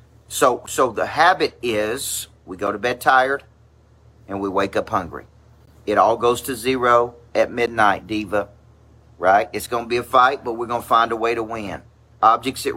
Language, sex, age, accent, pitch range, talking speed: English, male, 40-59, American, 105-130 Hz, 185 wpm